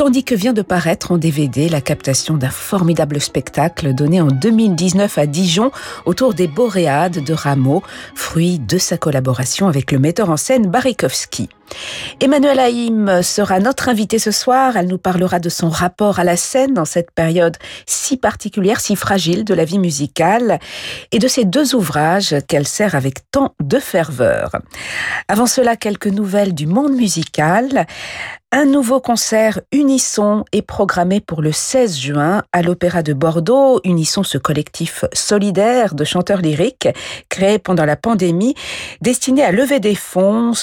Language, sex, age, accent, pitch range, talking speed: French, female, 50-69, French, 155-215 Hz, 160 wpm